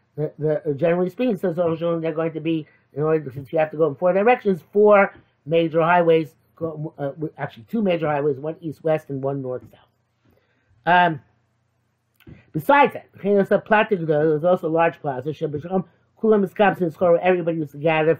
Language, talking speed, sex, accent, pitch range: English, 150 wpm, male, American, 155-205 Hz